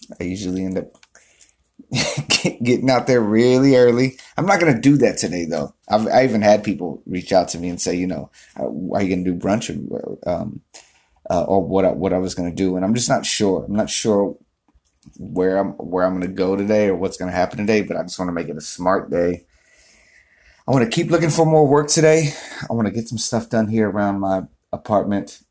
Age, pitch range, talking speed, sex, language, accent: 30-49, 90-125 Hz, 235 wpm, male, English, American